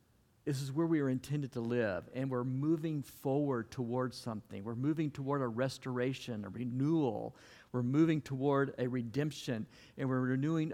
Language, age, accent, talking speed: English, 50-69, American, 160 wpm